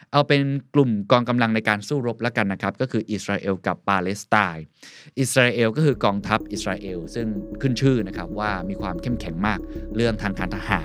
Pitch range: 100-135 Hz